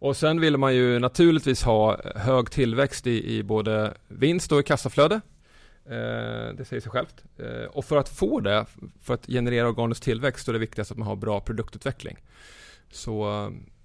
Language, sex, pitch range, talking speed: Swedish, male, 105-130 Hz, 180 wpm